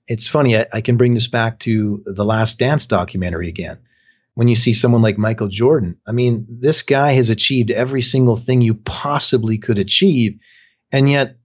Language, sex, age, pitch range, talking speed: English, male, 30-49, 110-130 Hz, 190 wpm